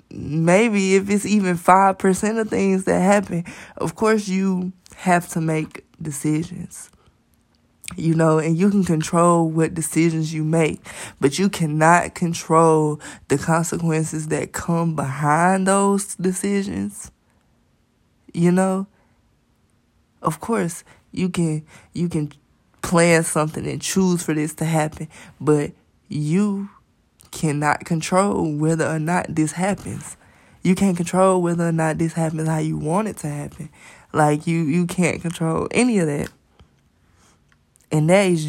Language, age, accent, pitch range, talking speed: English, 20-39, American, 155-185 Hz, 135 wpm